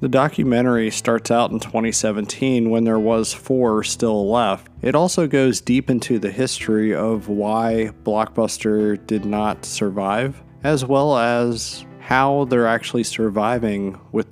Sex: male